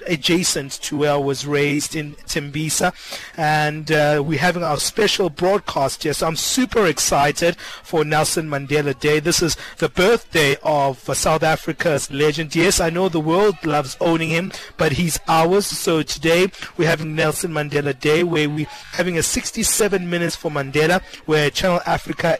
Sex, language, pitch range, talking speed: male, English, 155-190 Hz, 165 wpm